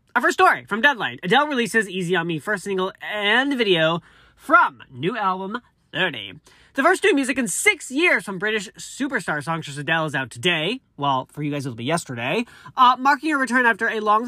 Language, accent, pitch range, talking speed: English, American, 155-230 Hz, 200 wpm